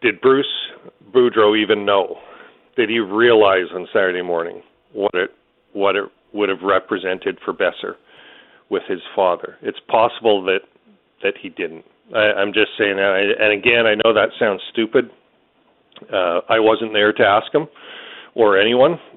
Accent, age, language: American, 40-59, English